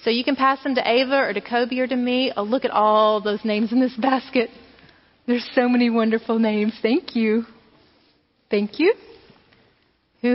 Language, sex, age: English, female, 30-49